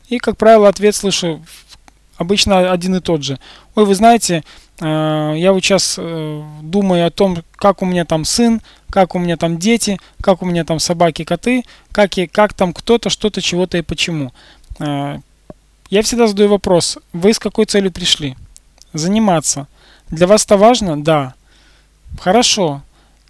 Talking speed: 150 wpm